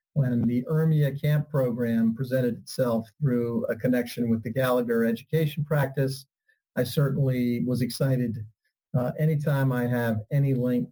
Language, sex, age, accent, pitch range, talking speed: English, male, 40-59, American, 120-145 Hz, 135 wpm